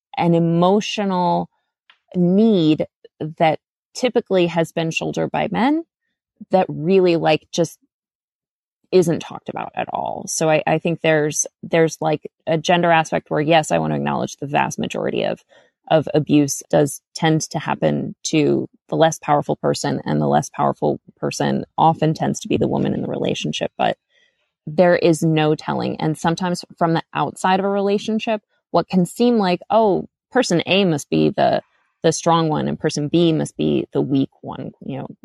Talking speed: 170 wpm